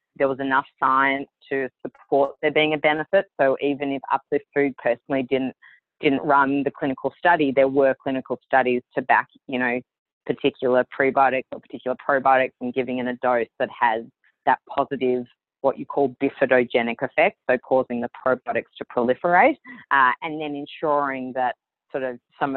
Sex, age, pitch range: female, 20-39, 130-150 Hz